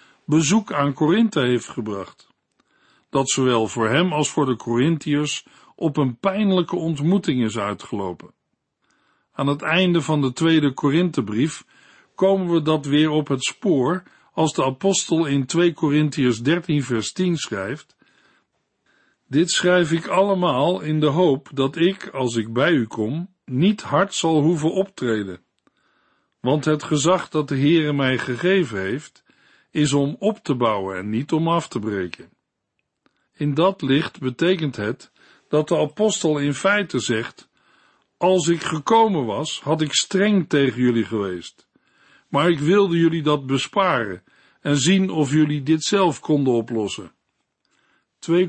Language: Dutch